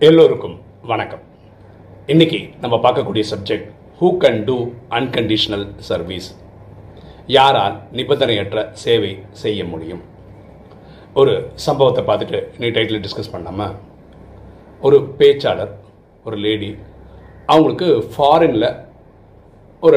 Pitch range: 100-145 Hz